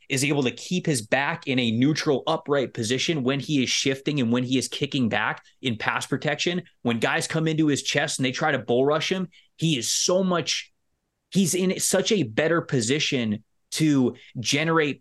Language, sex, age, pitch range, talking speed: English, male, 20-39, 125-160 Hz, 195 wpm